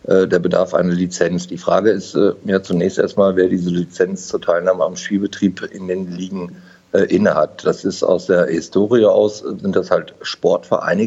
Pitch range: 90-105 Hz